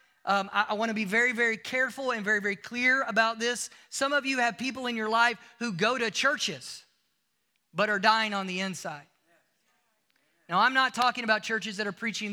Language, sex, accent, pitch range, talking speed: English, male, American, 200-270 Hz, 200 wpm